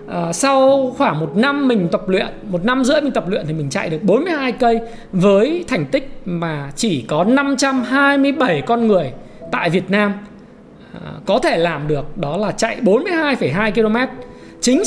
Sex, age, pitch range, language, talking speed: male, 20-39, 185-275 Hz, Vietnamese, 160 wpm